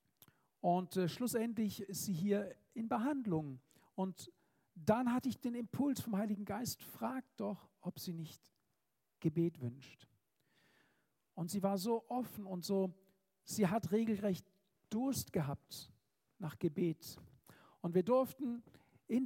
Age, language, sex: 50-69, German, male